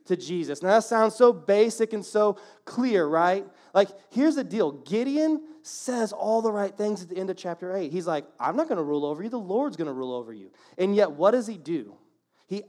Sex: male